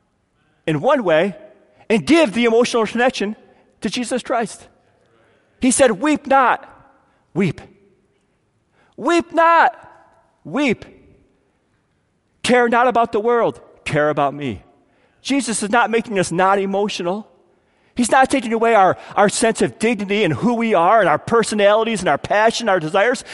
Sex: male